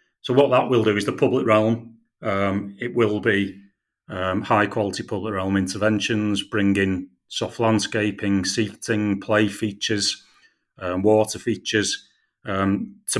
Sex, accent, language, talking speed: male, British, English, 135 wpm